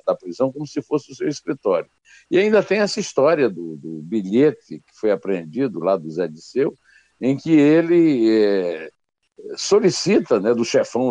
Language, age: Portuguese, 60-79